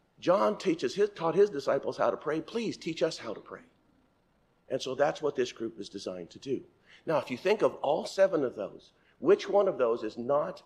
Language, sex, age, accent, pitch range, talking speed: English, male, 50-69, American, 130-210 Hz, 225 wpm